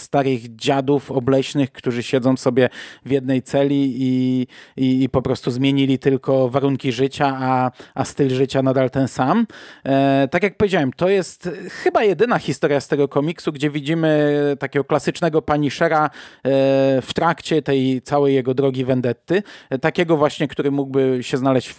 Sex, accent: male, native